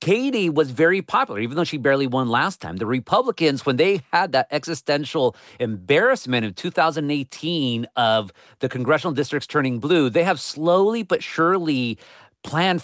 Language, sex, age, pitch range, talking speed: English, male, 40-59, 130-170 Hz, 155 wpm